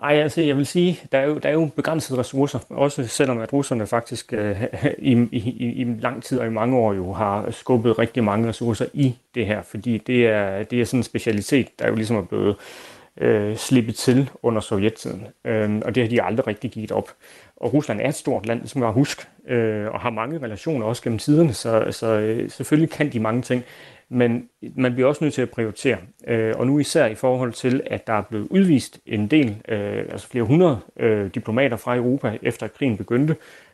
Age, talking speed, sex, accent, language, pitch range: 30-49, 210 wpm, male, native, Danish, 110-135 Hz